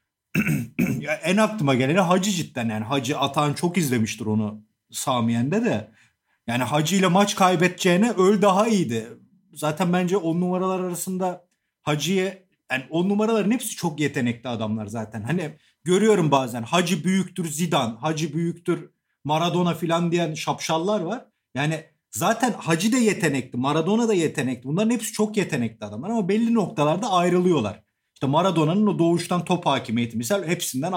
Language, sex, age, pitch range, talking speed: Turkish, male, 40-59, 130-190 Hz, 145 wpm